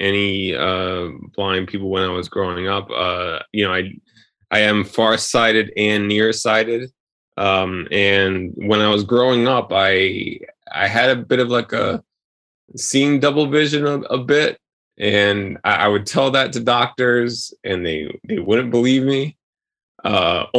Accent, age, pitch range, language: American, 20-39, 100-120 Hz, English